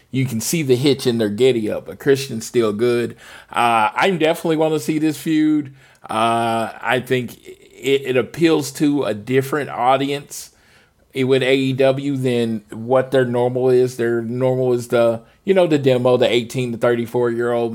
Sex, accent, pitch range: male, American, 125-145 Hz